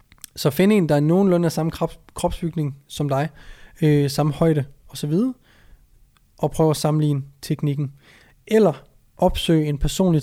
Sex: male